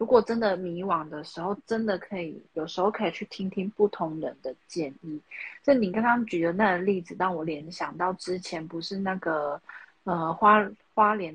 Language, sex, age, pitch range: Chinese, female, 30-49, 170-210 Hz